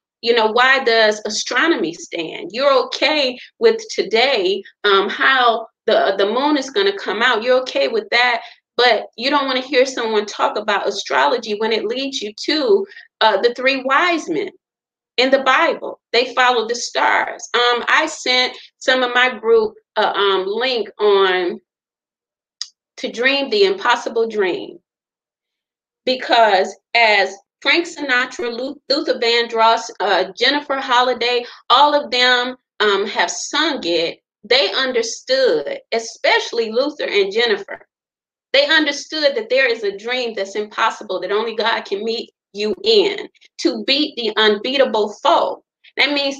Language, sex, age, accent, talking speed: English, female, 30-49, American, 145 wpm